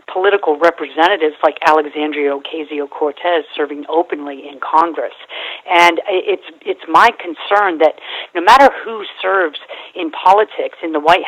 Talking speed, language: 130 wpm, English